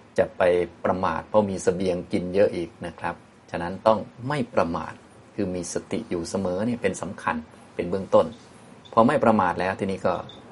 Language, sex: Thai, male